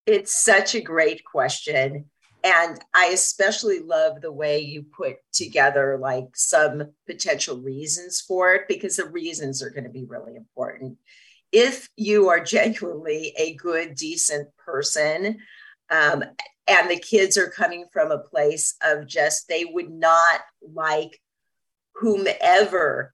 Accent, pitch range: American, 150-215 Hz